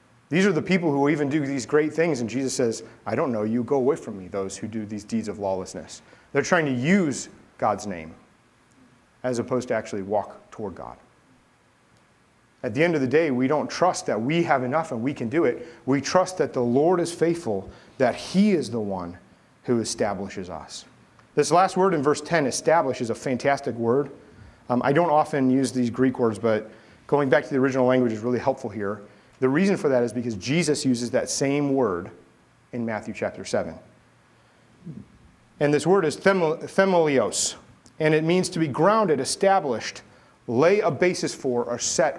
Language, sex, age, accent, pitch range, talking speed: English, male, 40-59, American, 120-175 Hz, 195 wpm